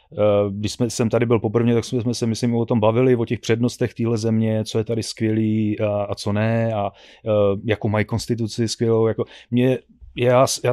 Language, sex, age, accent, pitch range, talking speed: Czech, male, 30-49, native, 110-130 Hz, 195 wpm